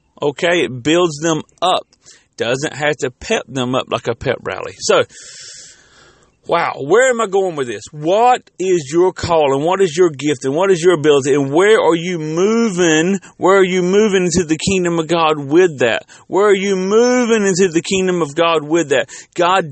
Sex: male